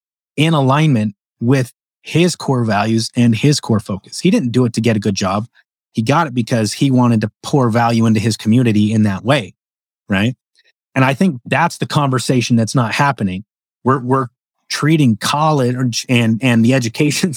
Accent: American